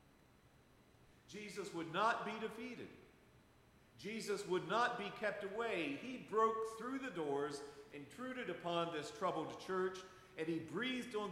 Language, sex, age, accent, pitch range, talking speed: English, male, 50-69, American, 160-215 Hz, 135 wpm